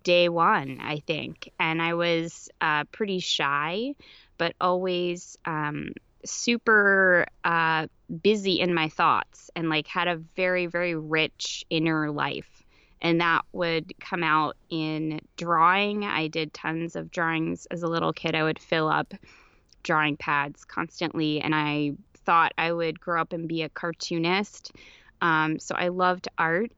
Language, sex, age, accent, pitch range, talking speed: English, female, 20-39, American, 155-180 Hz, 150 wpm